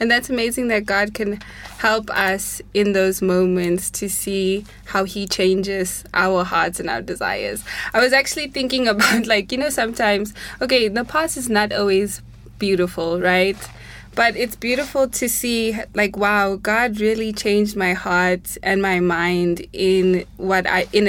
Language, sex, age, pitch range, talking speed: English, female, 20-39, 185-220 Hz, 160 wpm